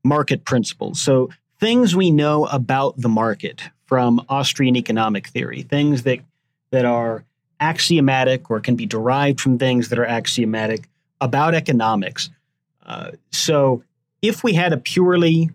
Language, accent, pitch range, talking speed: English, American, 125-150 Hz, 140 wpm